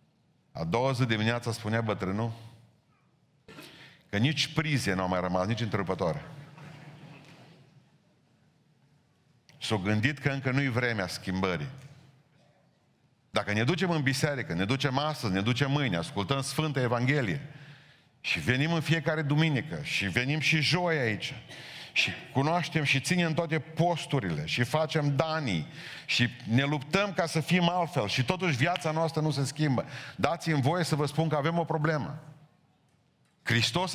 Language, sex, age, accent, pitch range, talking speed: Romanian, male, 50-69, native, 125-160 Hz, 140 wpm